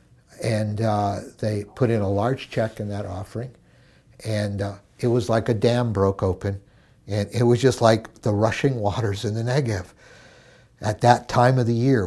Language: English